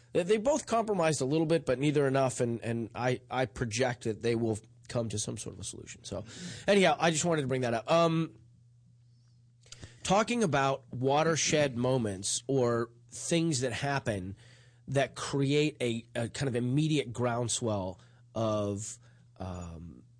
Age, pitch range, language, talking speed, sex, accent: 30-49, 115-135 Hz, English, 155 wpm, male, American